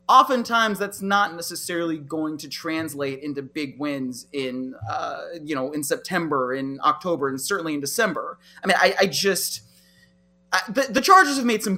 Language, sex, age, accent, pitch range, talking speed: English, male, 30-49, American, 150-215 Hz, 175 wpm